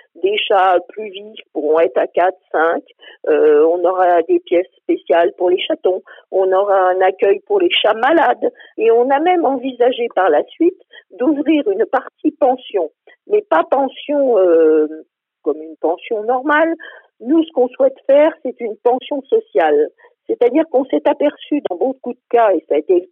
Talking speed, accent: 175 wpm, French